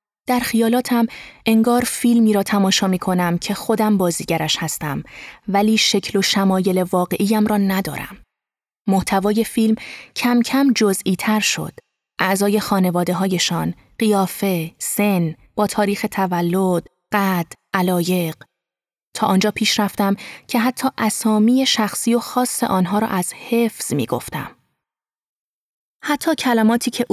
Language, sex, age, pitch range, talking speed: Persian, female, 20-39, 185-230 Hz, 120 wpm